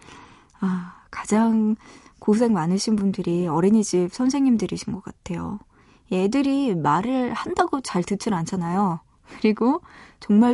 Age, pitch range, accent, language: 20-39, 190-265 Hz, native, Korean